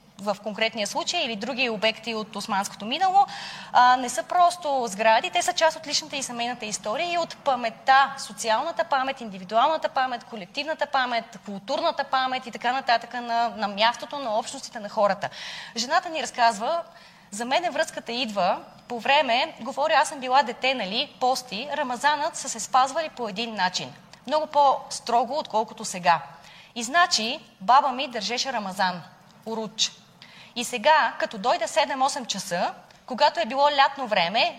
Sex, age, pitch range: female, 20-39, 215-290 Hz